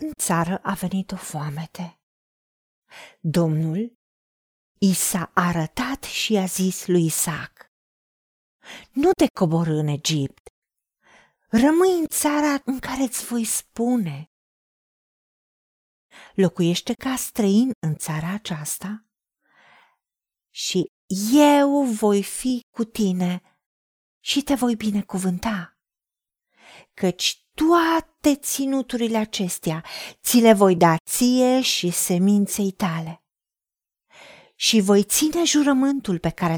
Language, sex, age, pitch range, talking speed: Romanian, female, 40-59, 180-255 Hz, 100 wpm